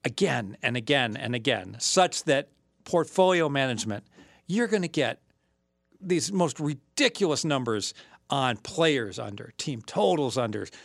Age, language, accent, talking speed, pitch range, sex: 50-69, English, American, 125 wpm, 125-170 Hz, male